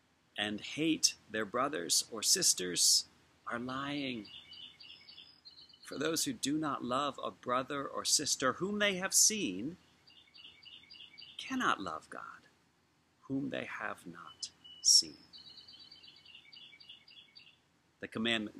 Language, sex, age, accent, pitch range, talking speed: English, male, 40-59, American, 90-120 Hz, 105 wpm